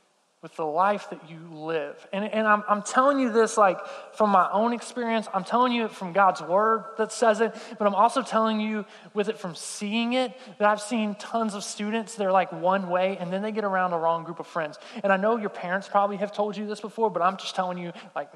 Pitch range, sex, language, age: 180-220 Hz, male, English, 20-39